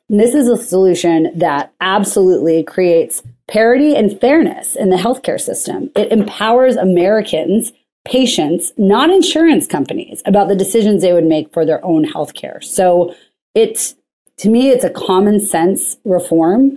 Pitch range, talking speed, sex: 180-230 Hz, 150 wpm, female